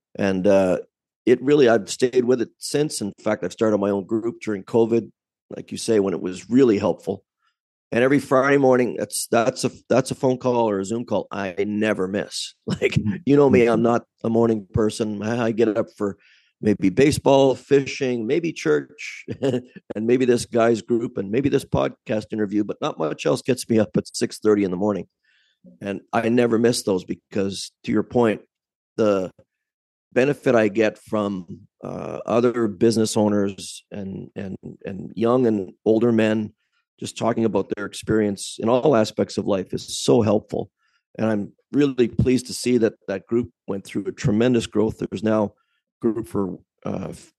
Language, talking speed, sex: English, 180 wpm, male